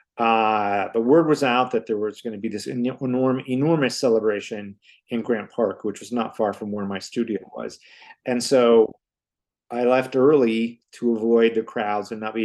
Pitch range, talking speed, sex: 110-130 Hz, 190 wpm, male